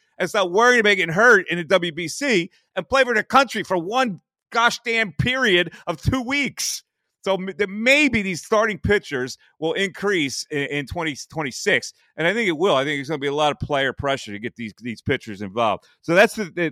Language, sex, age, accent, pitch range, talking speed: English, male, 30-49, American, 135-200 Hz, 205 wpm